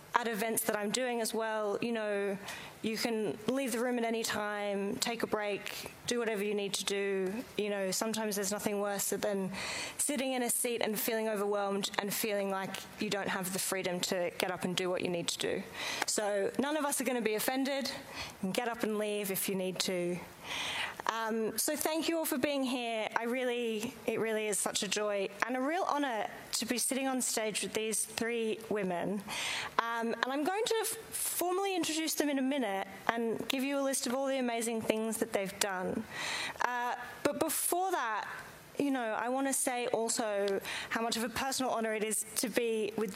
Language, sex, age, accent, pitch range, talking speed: English, female, 20-39, Australian, 205-250 Hz, 205 wpm